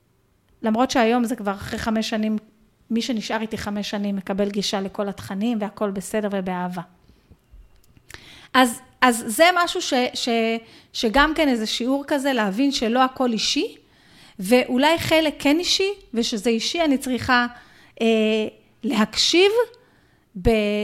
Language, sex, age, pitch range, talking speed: Hebrew, female, 30-49, 220-285 Hz, 125 wpm